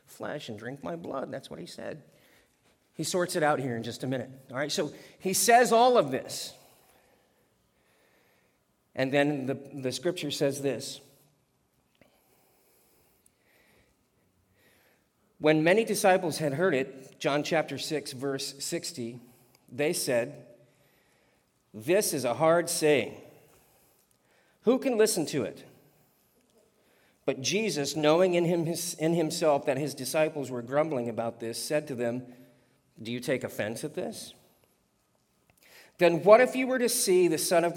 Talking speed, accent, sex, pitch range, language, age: 140 wpm, American, male, 120-155 Hz, English, 40-59